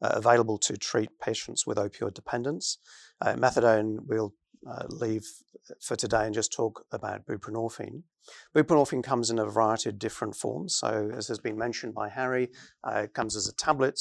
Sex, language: male, English